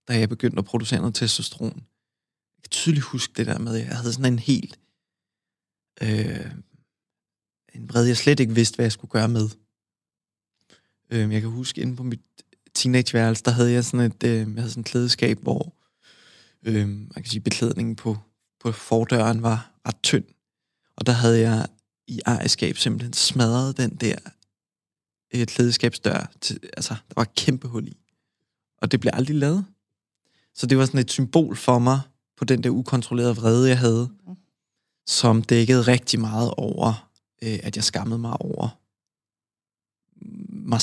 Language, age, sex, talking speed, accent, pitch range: Danish, 20-39, male, 170 wpm, native, 110-125 Hz